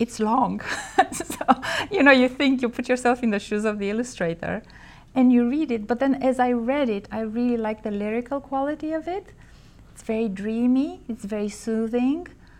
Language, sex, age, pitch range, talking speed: English, female, 30-49, 195-245 Hz, 190 wpm